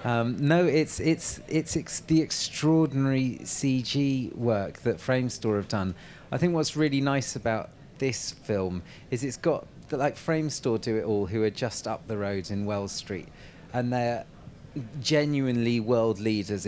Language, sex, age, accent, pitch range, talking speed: English, male, 30-49, British, 110-145 Hz, 160 wpm